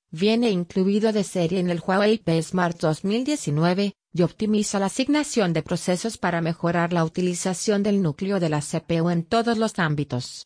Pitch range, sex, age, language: 165-195 Hz, female, 30-49, English